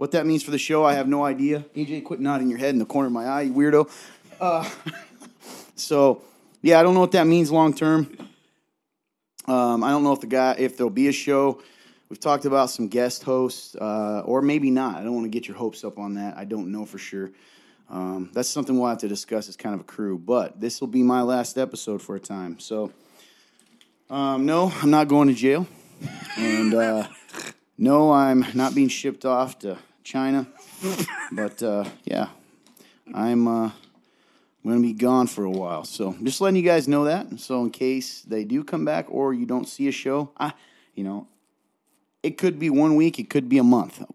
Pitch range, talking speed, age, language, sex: 110-145 Hz, 210 wpm, 30-49, English, male